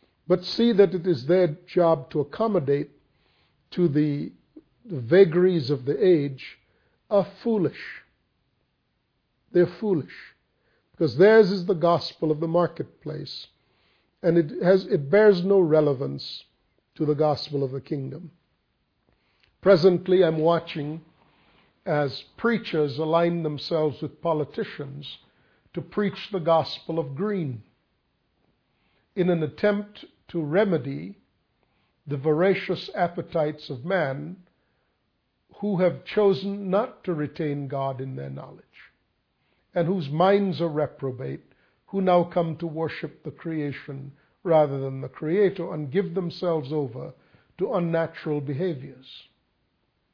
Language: English